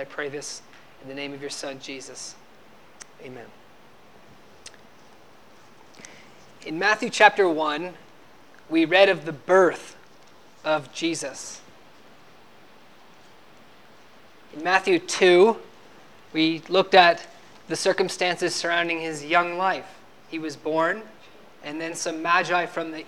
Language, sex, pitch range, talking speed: English, male, 155-190 Hz, 110 wpm